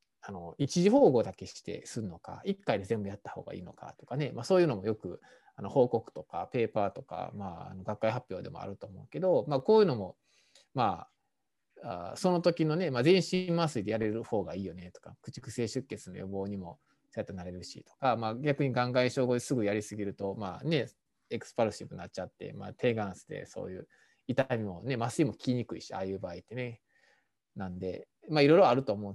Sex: male